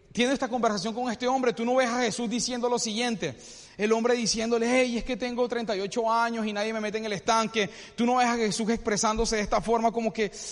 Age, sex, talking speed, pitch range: 30-49, male, 235 wpm, 220-260 Hz